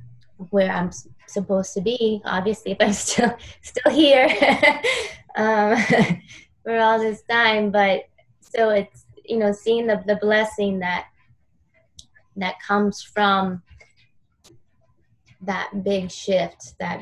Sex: female